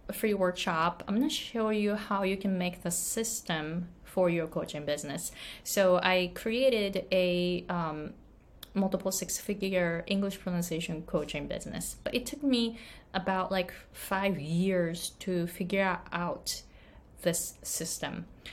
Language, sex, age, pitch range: Japanese, female, 20-39, 170-200 Hz